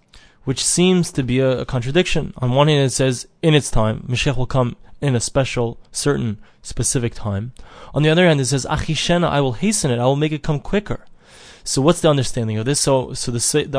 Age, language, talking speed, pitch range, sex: 20-39, English, 220 wpm, 125-155 Hz, male